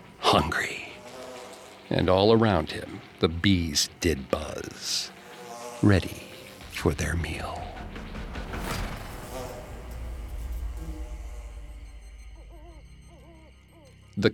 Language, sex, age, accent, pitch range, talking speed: English, male, 50-69, American, 90-120 Hz, 60 wpm